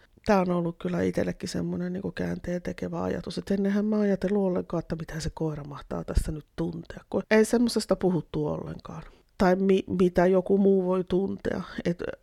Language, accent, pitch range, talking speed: Finnish, native, 155-185 Hz, 175 wpm